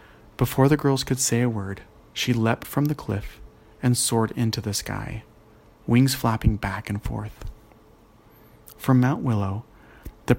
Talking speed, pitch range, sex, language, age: 150 wpm, 110-130 Hz, male, English, 30-49